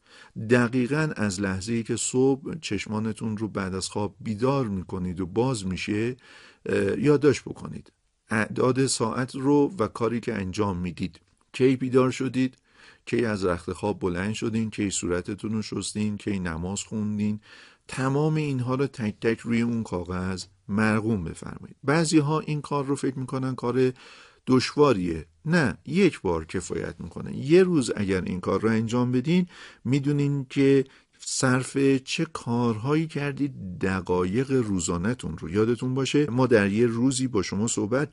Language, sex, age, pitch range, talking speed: Persian, male, 50-69, 100-130 Hz, 140 wpm